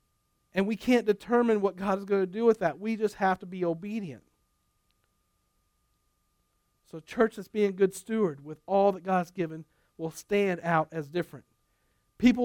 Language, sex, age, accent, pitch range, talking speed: English, male, 50-69, American, 150-200 Hz, 180 wpm